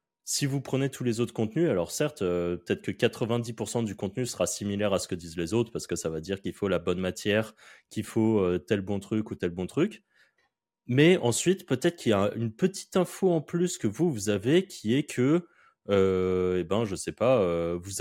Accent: French